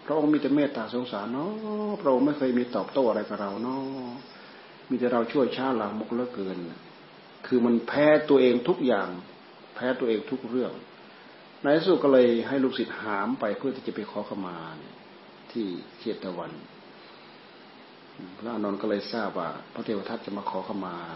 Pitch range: 105-130 Hz